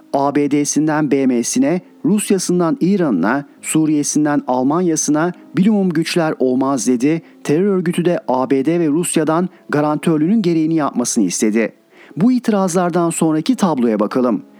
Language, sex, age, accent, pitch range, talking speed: Turkish, male, 40-59, native, 145-185 Hz, 105 wpm